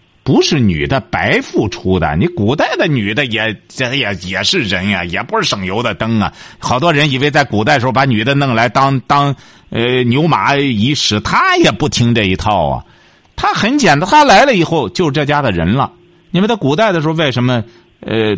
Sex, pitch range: male, 105-175 Hz